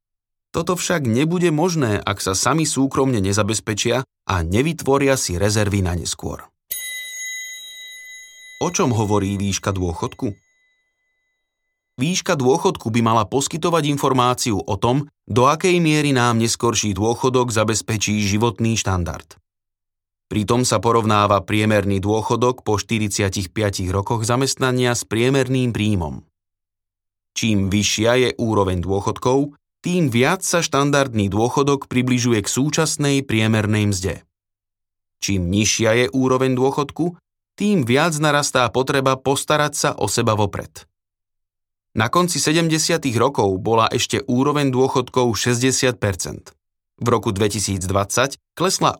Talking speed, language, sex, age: 110 wpm, Slovak, male, 30-49